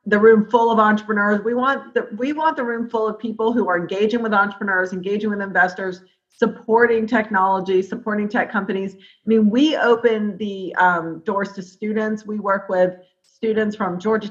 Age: 40-59